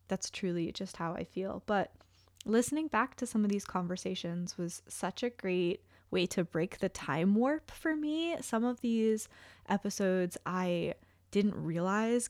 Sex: female